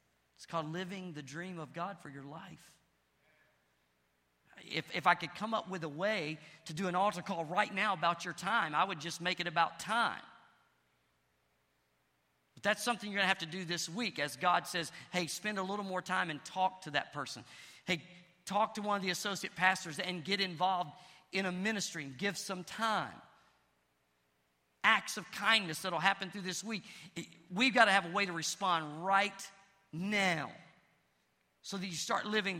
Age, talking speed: 50-69, 190 wpm